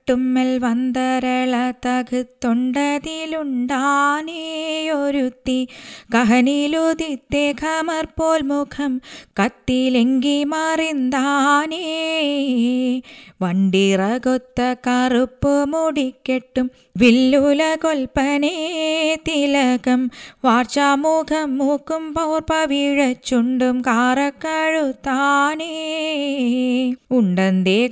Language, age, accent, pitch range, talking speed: Malayalam, 20-39, native, 255-310 Hz, 45 wpm